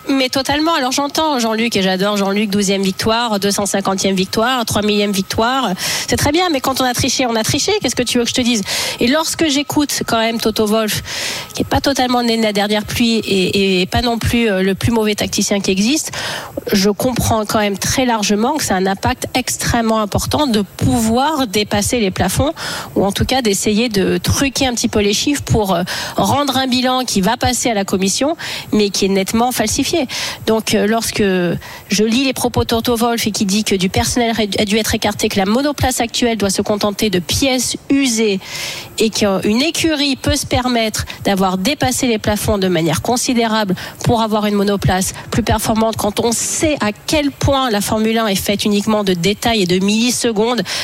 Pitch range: 205-250 Hz